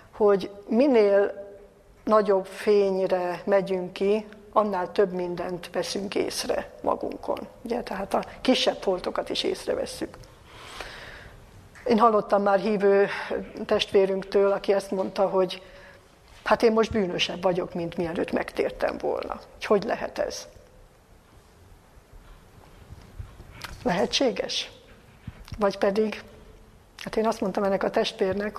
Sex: female